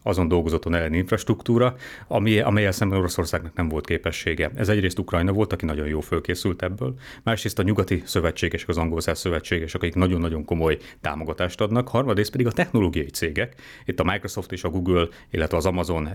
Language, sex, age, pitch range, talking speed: Hungarian, male, 30-49, 85-110 Hz, 170 wpm